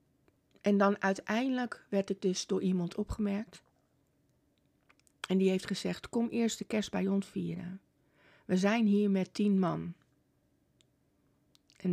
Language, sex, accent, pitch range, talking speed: Dutch, female, Dutch, 185-220 Hz, 135 wpm